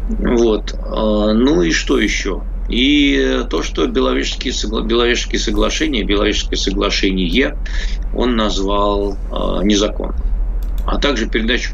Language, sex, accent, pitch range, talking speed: Russian, male, native, 90-110 Hz, 105 wpm